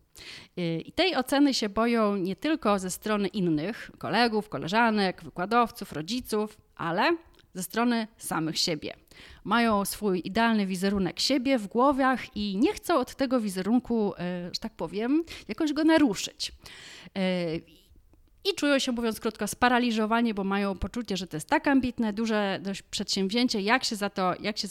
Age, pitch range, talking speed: 30-49, 190-255 Hz, 150 wpm